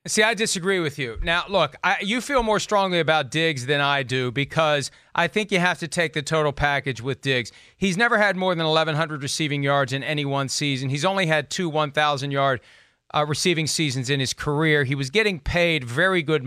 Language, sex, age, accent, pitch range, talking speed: English, male, 40-59, American, 150-195 Hz, 210 wpm